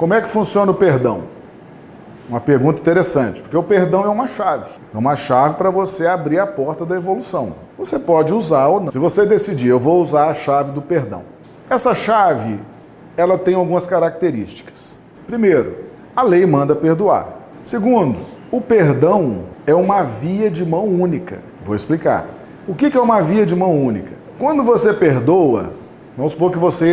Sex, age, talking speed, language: male, 40-59, 170 wpm, Portuguese